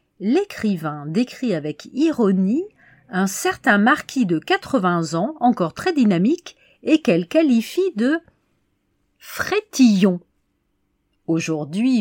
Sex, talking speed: female, 95 wpm